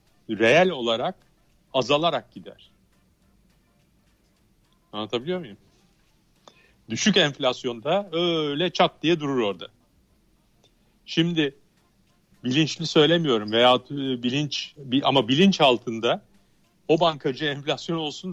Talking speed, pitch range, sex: 80 wpm, 125-155 Hz, male